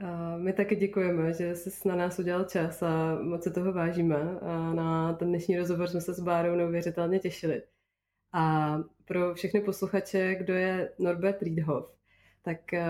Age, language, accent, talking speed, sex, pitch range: 20-39, Czech, native, 160 wpm, female, 170-185 Hz